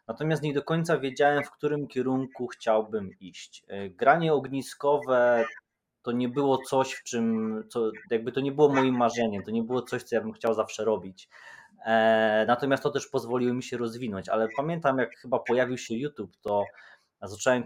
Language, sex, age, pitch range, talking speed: Polish, male, 20-39, 110-130 Hz, 175 wpm